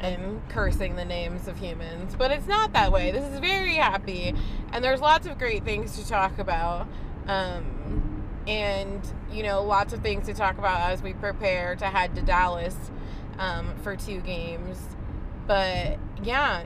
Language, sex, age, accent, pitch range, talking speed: English, female, 20-39, American, 185-230 Hz, 170 wpm